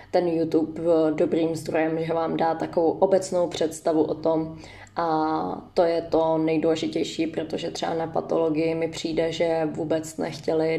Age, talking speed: 20-39, 150 wpm